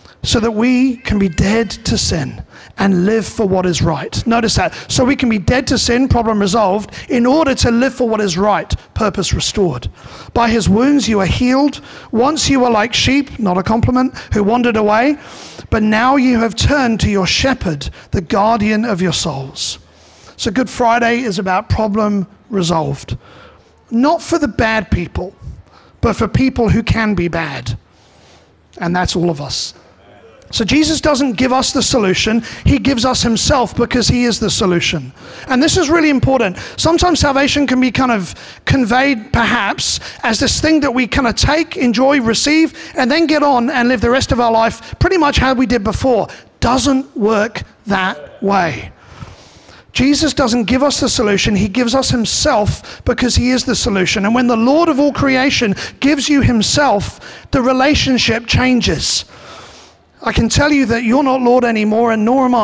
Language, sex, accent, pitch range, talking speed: English, male, British, 205-265 Hz, 180 wpm